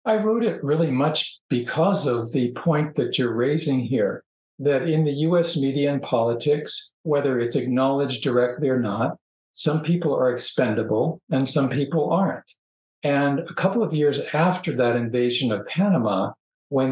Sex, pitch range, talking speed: male, 125-160 Hz, 160 wpm